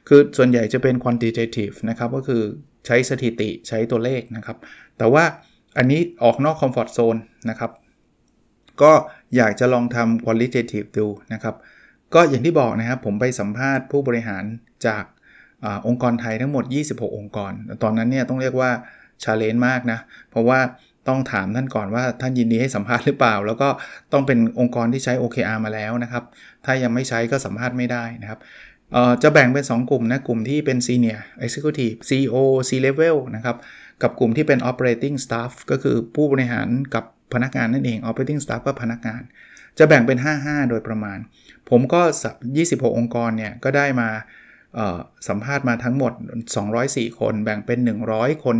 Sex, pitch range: male, 115-130 Hz